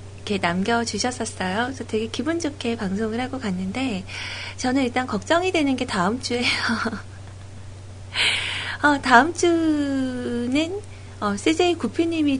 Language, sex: Korean, female